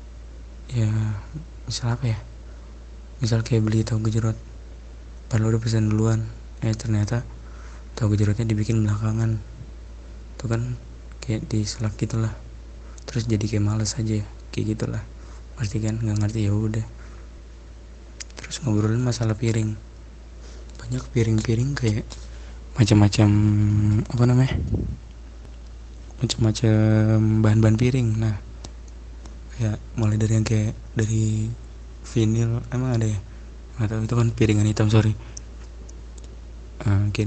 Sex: male